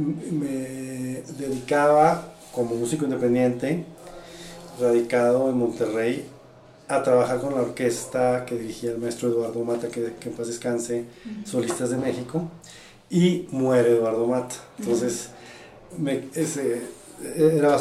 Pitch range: 120-150 Hz